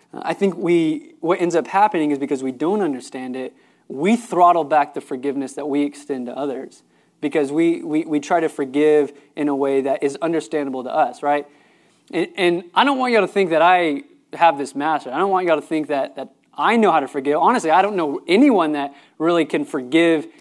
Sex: male